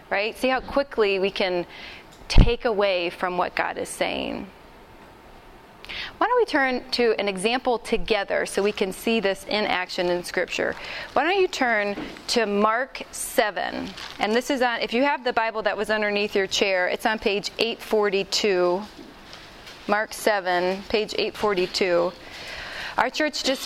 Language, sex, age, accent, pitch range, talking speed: English, female, 20-39, American, 205-255 Hz, 155 wpm